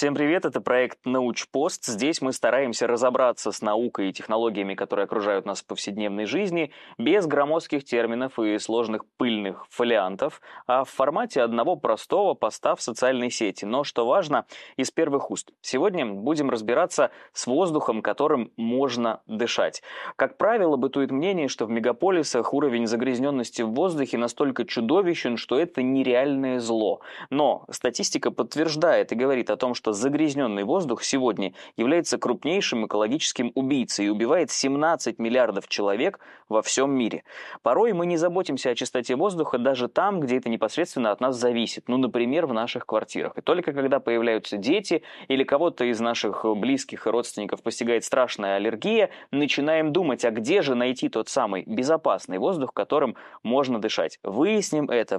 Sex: male